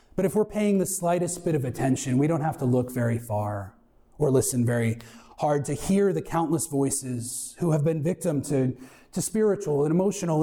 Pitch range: 135-185 Hz